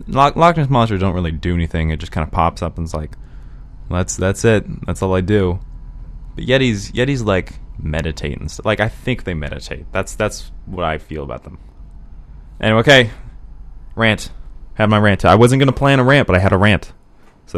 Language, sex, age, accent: English, male, 20-39, American